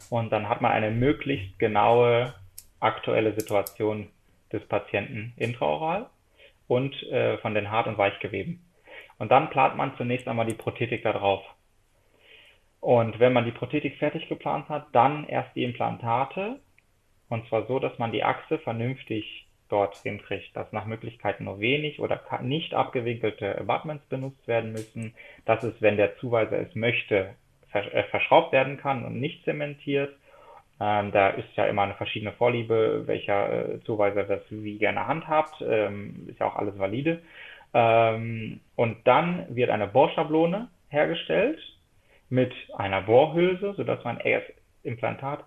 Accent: German